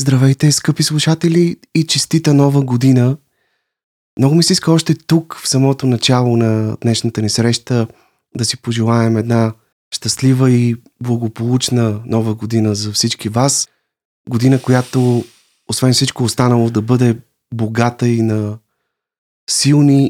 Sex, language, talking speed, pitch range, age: male, Bulgarian, 130 wpm, 110-130 Hz, 30-49